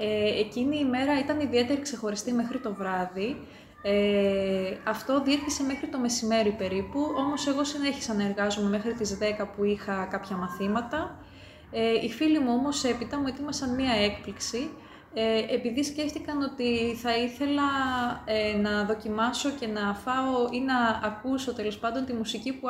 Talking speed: 155 wpm